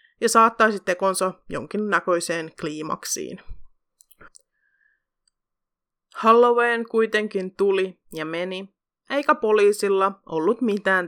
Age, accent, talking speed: 20-39, native, 75 wpm